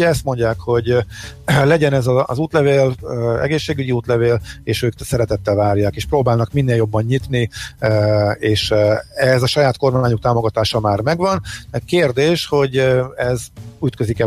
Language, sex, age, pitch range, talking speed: Hungarian, male, 50-69, 115-150 Hz, 130 wpm